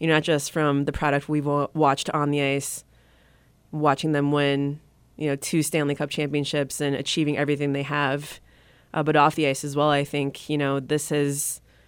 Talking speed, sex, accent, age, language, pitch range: 195 wpm, female, American, 20-39, English, 140-155 Hz